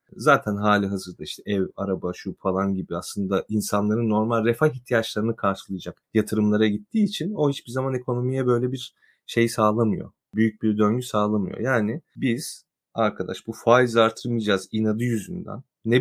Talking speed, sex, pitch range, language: 145 wpm, male, 105-130 Hz, Turkish